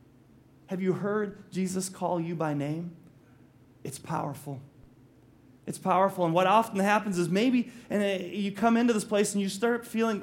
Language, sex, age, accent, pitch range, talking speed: English, male, 30-49, American, 140-200 Hz, 160 wpm